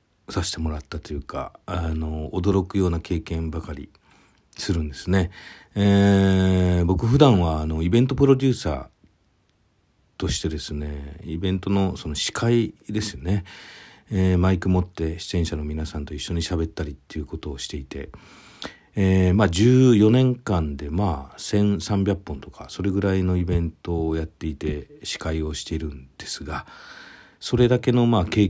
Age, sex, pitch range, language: 50-69, male, 80-100 Hz, Japanese